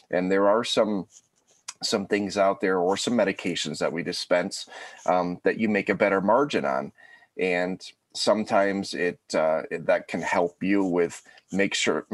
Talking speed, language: 170 wpm, English